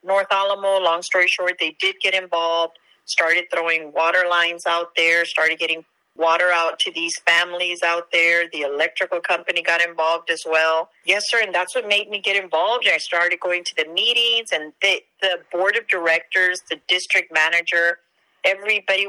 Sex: female